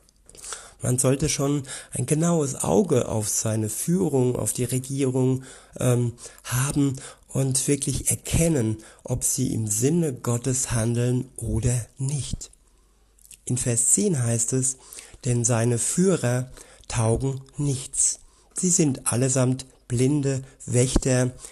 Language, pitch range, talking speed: German, 115-135 Hz, 110 wpm